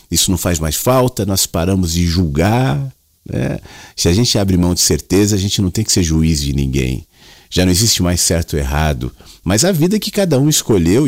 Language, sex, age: Portuguese, male, 40-59